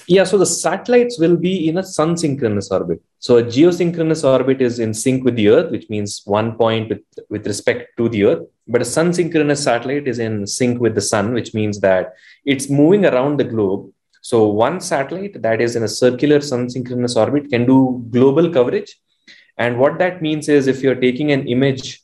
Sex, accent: male, Indian